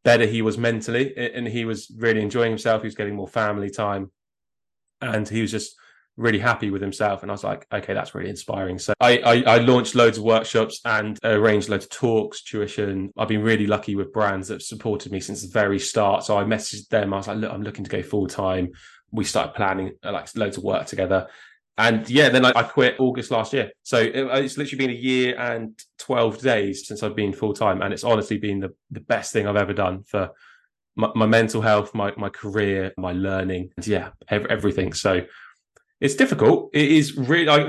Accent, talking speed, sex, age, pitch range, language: British, 215 wpm, male, 20-39, 100-115 Hz, English